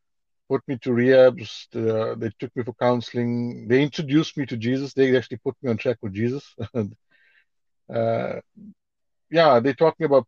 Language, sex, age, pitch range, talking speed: English, male, 60-79, 115-145 Hz, 165 wpm